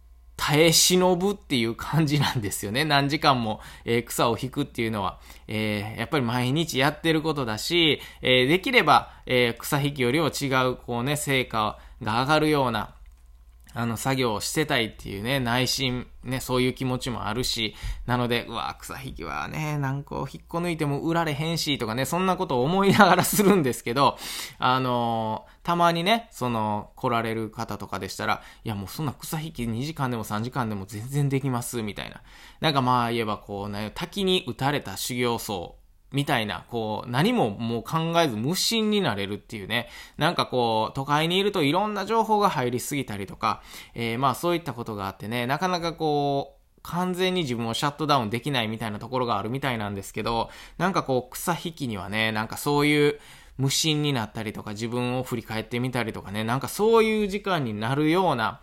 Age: 20-39